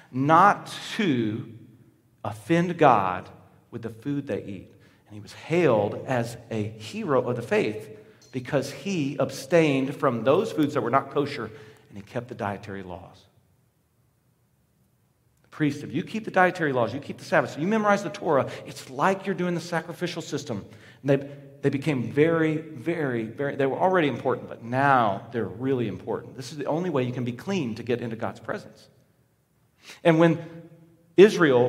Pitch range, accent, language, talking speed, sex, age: 120-165 Hz, American, English, 175 wpm, male, 40-59